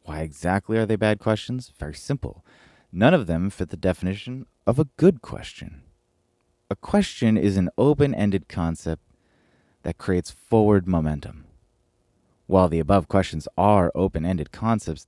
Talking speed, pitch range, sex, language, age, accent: 140 wpm, 80-110 Hz, male, English, 30-49, American